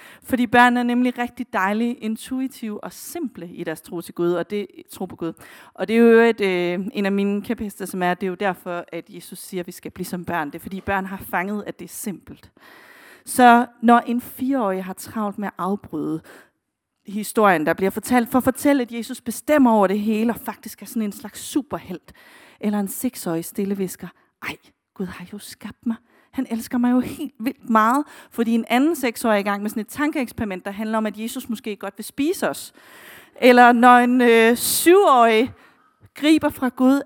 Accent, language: native, Danish